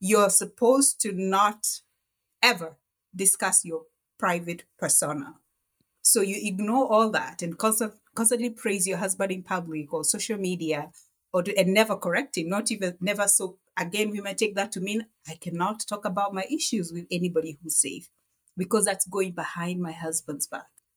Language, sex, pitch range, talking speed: English, female, 180-235 Hz, 165 wpm